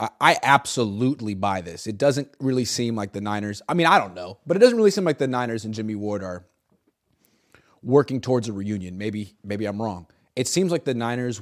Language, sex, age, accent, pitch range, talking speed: English, male, 30-49, American, 105-145 Hz, 215 wpm